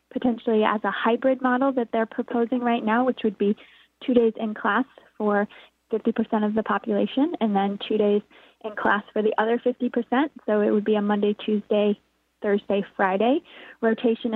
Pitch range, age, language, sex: 210-255 Hz, 20-39, English, female